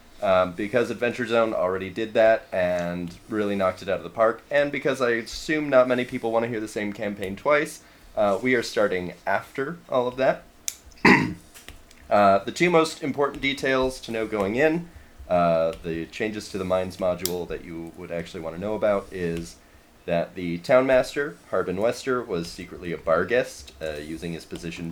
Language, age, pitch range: English, 30-49, 85-115 Hz